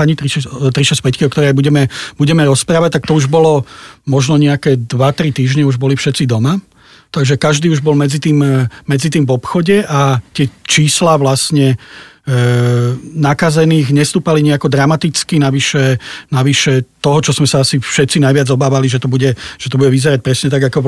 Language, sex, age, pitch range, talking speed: Slovak, male, 40-59, 130-145 Hz, 170 wpm